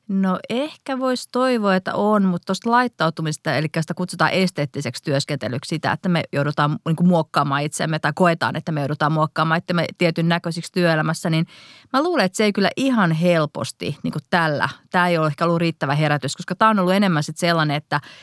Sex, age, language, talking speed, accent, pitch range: female, 30-49, Finnish, 195 wpm, native, 150-185 Hz